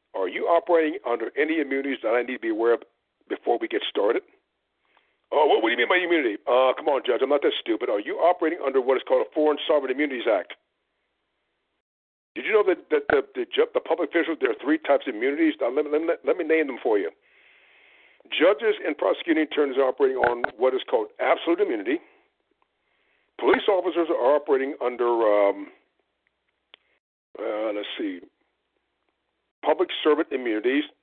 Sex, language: male, English